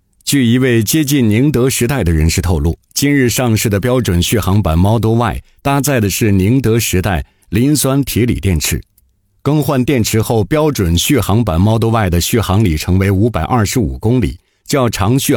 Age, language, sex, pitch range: 50-69, Chinese, male, 95-125 Hz